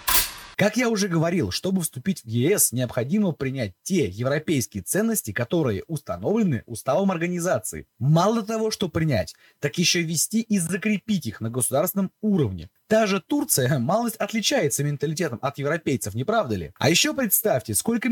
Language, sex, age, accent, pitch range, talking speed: Russian, male, 20-39, native, 140-215 Hz, 150 wpm